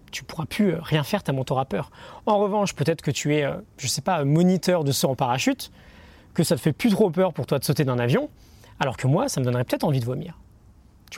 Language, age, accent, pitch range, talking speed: French, 20-39, French, 130-185 Hz, 275 wpm